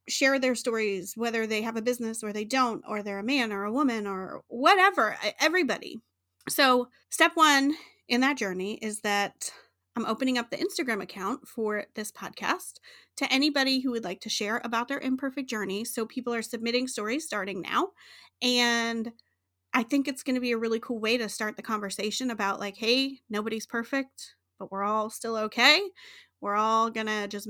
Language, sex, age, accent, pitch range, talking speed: English, female, 30-49, American, 210-270 Hz, 190 wpm